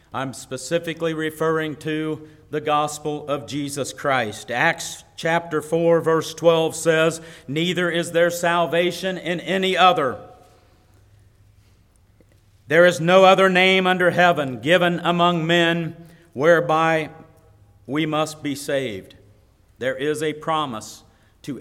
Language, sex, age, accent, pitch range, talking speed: English, male, 50-69, American, 110-175 Hz, 115 wpm